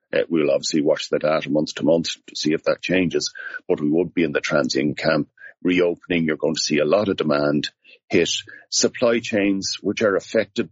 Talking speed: 200 wpm